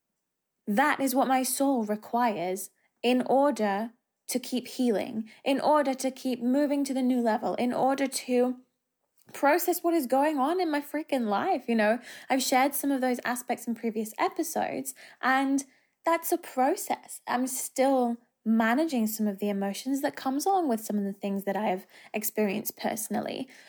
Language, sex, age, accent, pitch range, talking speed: English, female, 20-39, British, 225-290 Hz, 170 wpm